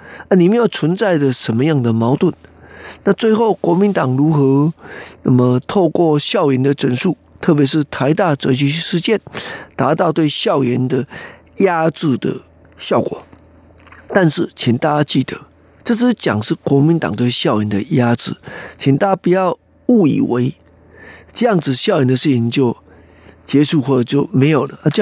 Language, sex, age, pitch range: Chinese, male, 50-69, 130-175 Hz